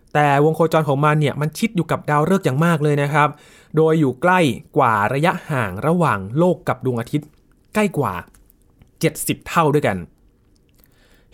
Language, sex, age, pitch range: Thai, male, 20-39, 115-155 Hz